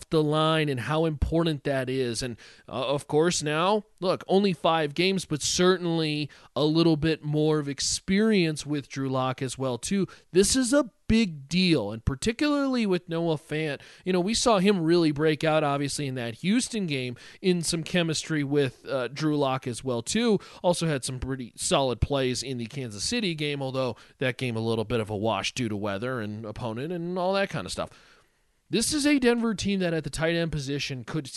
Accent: American